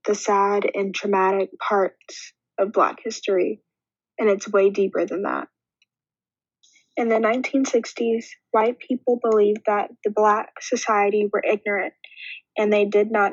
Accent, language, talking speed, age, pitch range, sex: American, English, 135 wpm, 10-29, 200-230 Hz, female